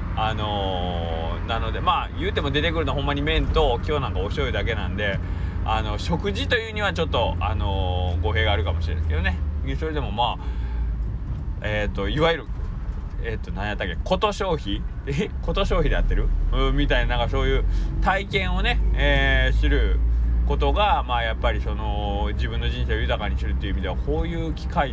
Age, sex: 20-39, male